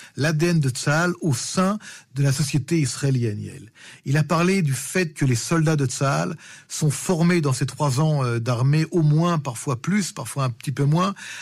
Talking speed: 185 wpm